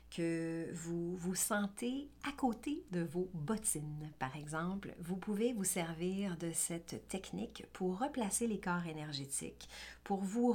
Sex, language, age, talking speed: female, French, 50-69, 140 wpm